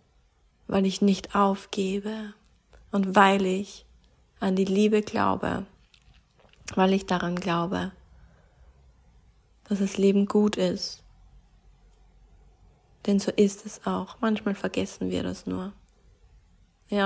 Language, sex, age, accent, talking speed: German, female, 30-49, German, 110 wpm